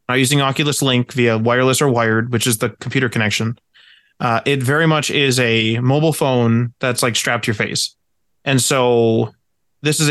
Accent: American